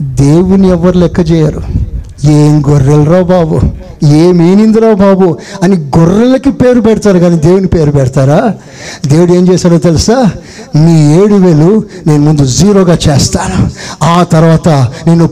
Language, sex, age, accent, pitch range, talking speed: Telugu, male, 60-79, native, 140-190 Hz, 125 wpm